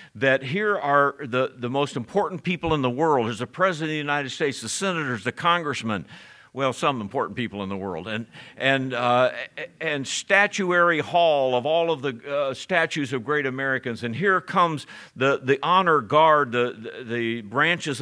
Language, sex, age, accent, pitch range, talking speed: English, male, 50-69, American, 115-160 Hz, 185 wpm